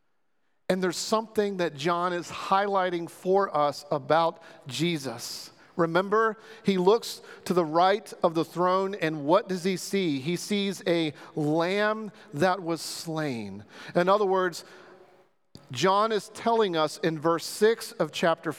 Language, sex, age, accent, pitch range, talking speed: English, male, 40-59, American, 165-215 Hz, 140 wpm